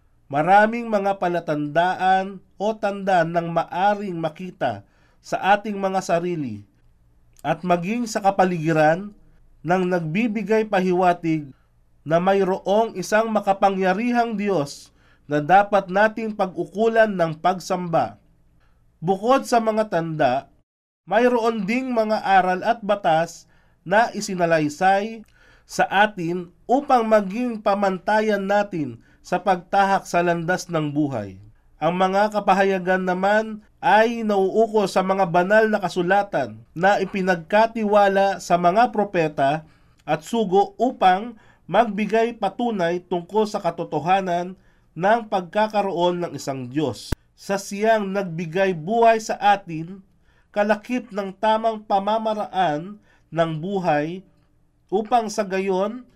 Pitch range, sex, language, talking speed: 170-215 Hz, male, Filipino, 105 wpm